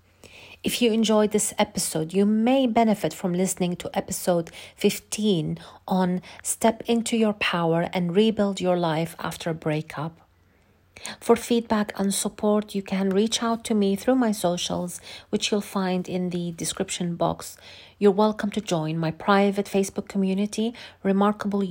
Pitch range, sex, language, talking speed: 175-215 Hz, female, English, 150 wpm